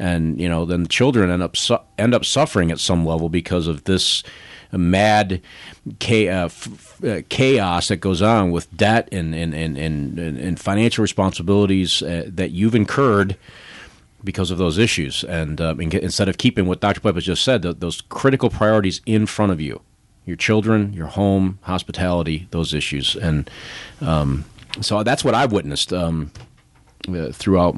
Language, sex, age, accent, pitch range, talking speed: English, male, 40-59, American, 85-110 Hz, 160 wpm